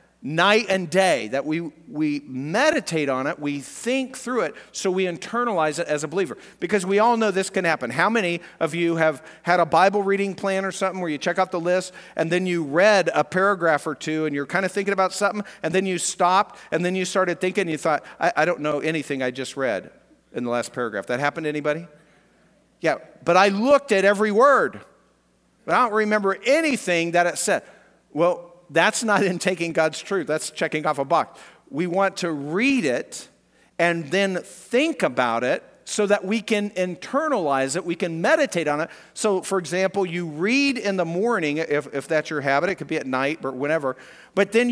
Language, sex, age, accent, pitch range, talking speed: English, male, 50-69, American, 155-200 Hz, 210 wpm